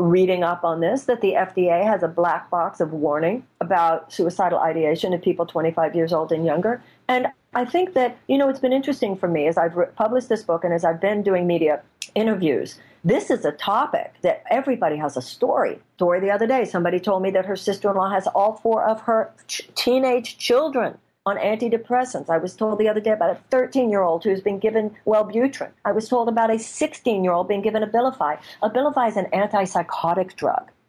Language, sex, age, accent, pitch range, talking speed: English, female, 50-69, American, 170-225 Hz, 200 wpm